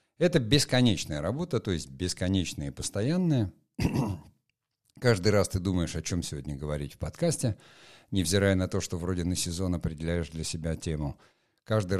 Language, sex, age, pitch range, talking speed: Russian, male, 60-79, 85-115 Hz, 150 wpm